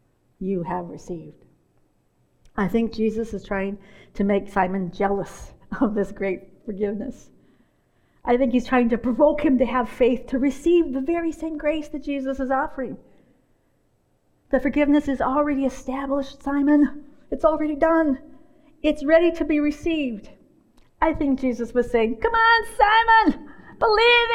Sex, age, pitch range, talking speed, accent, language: female, 50-69, 220-330 Hz, 145 wpm, American, English